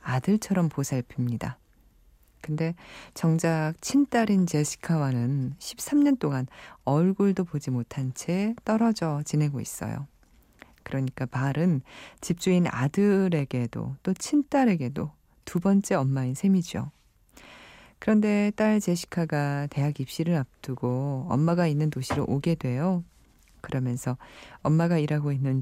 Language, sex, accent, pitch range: Korean, female, native, 135-190 Hz